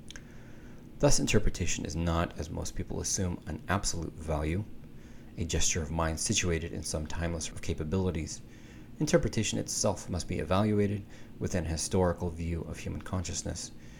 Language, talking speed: English, 140 wpm